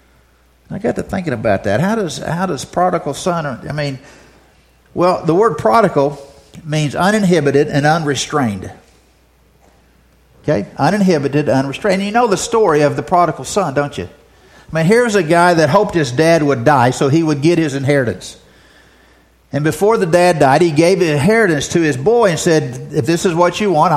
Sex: male